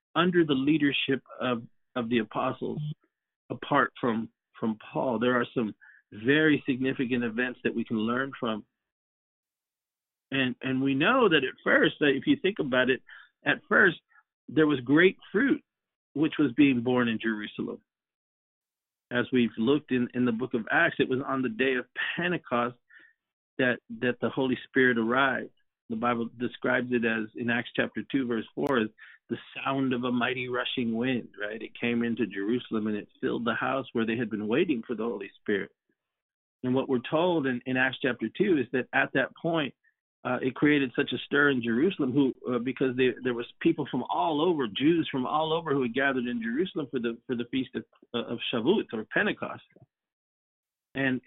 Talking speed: 185 wpm